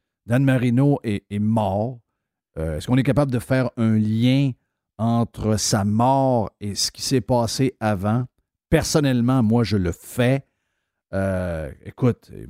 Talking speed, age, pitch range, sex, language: 145 wpm, 50-69, 105-135 Hz, male, French